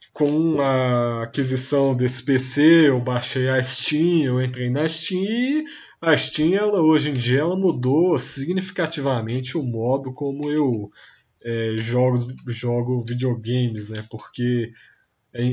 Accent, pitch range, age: Brazilian, 120-155 Hz, 20-39